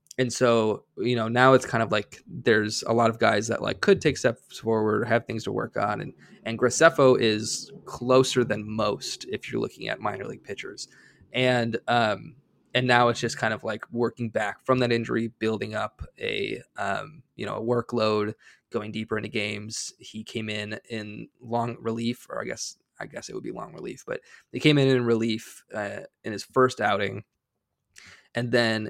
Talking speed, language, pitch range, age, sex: 195 wpm, English, 110-125 Hz, 20-39, male